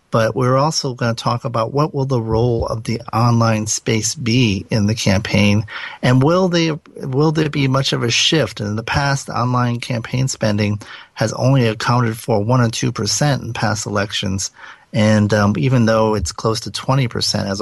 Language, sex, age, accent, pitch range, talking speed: English, male, 40-59, American, 105-120 Hz, 195 wpm